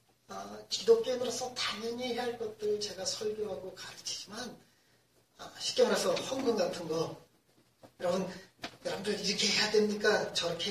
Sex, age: male, 40-59